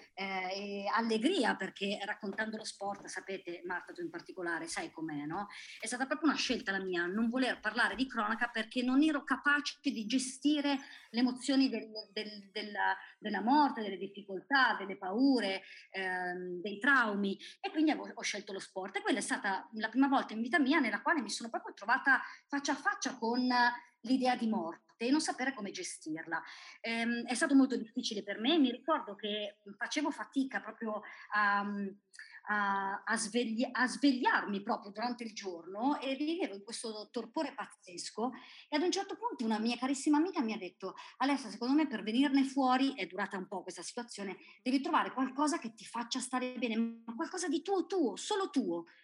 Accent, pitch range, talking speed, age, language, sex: native, 200-280 Hz, 180 wpm, 30-49, Italian, male